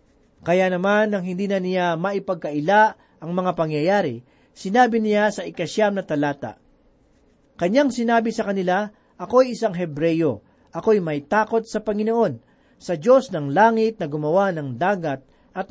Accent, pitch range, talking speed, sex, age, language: native, 165-220 Hz, 140 wpm, male, 40-59, Filipino